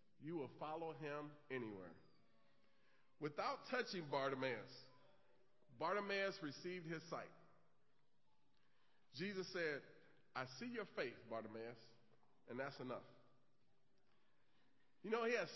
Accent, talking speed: American, 100 wpm